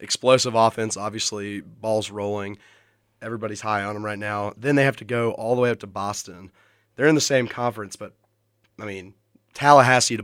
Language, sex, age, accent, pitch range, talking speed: English, male, 20-39, American, 105-120 Hz, 190 wpm